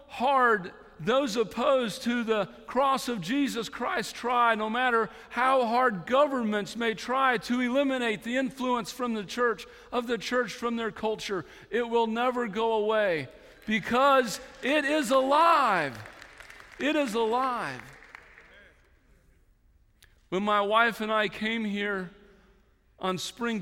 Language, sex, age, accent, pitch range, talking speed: English, male, 50-69, American, 175-230 Hz, 130 wpm